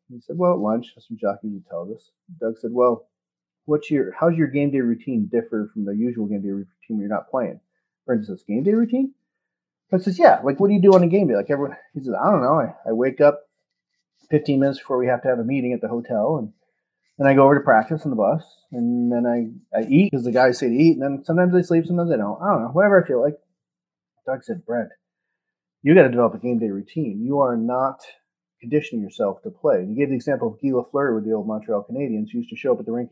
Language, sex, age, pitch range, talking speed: English, male, 30-49, 120-170 Hz, 265 wpm